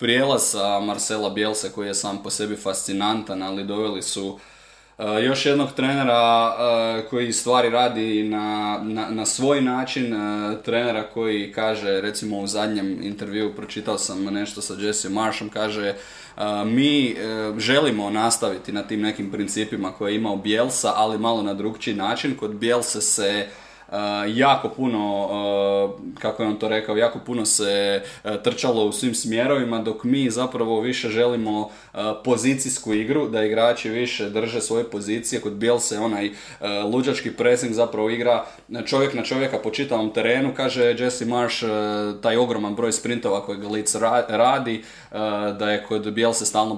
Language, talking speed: Croatian, 150 wpm